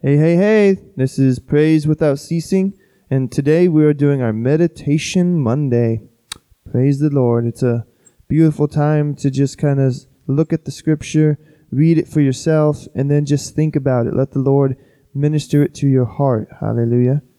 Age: 20-39